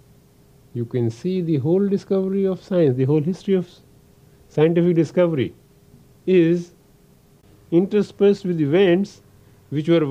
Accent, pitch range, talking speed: Indian, 105-155 Hz, 120 wpm